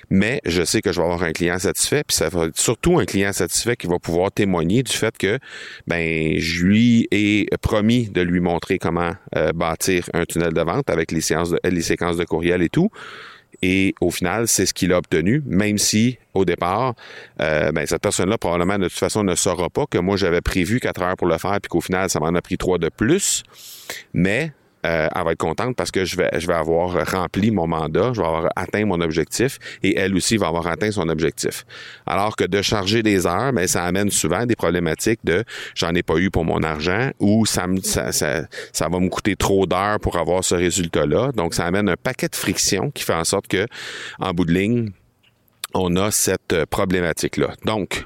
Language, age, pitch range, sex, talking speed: French, 30-49, 85-105 Hz, male, 225 wpm